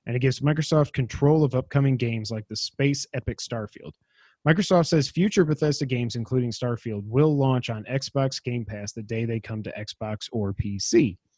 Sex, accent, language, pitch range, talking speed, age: male, American, English, 120-145 Hz, 180 wpm, 30-49